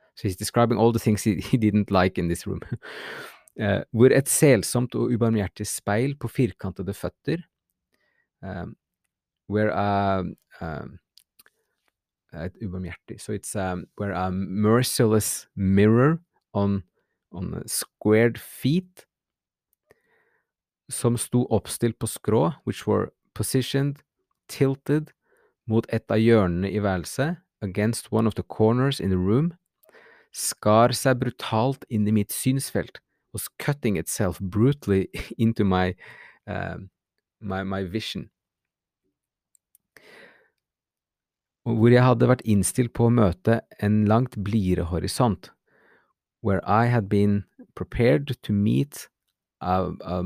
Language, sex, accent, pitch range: English, male, Norwegian, 95-125 Hz